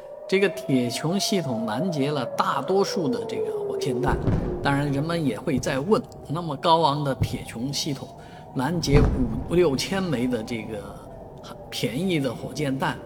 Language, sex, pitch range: Chinese, male, 130-180 Hz